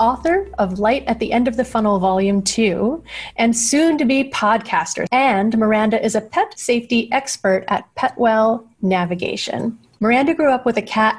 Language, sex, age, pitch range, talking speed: English, female, 30-49, 195-245 Hz, 170 wpm